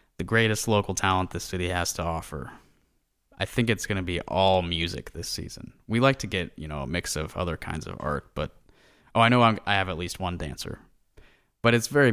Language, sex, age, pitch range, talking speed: English, male, 20-39, 90-115 Hz, 225 wpm